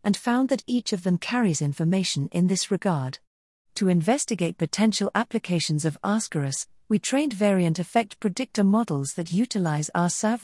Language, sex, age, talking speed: English, female, 50-69, 155 wpm